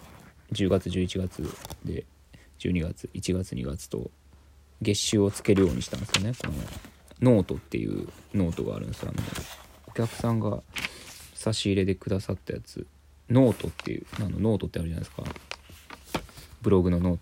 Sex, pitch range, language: male, 75-95 Hz, Japanese